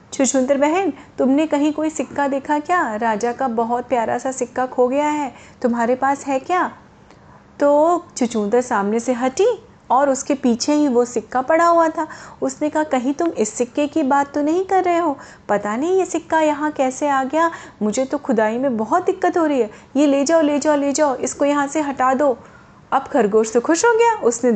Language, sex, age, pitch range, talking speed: Hindi, female, 30-49, 225-305 Hz, 215 wpm